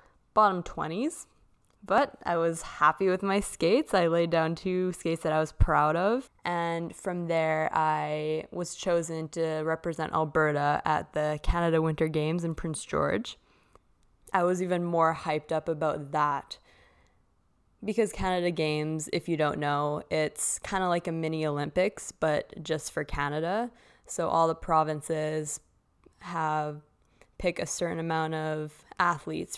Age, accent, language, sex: 20-39, American, English, female